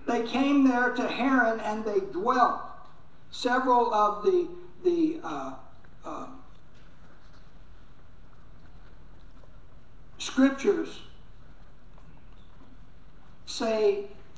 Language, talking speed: English, 65 wpm